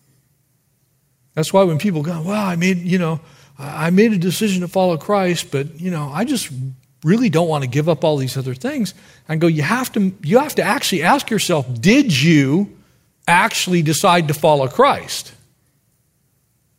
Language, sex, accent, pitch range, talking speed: English, male, American, 140-210 Hz, 180 wpm